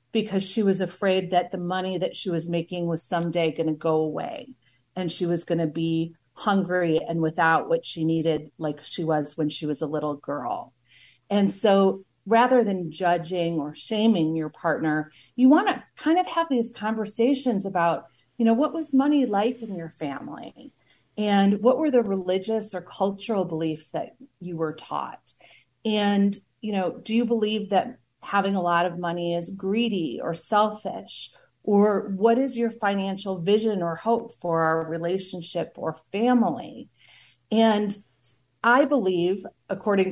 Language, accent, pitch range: English, American, 170-220 Hz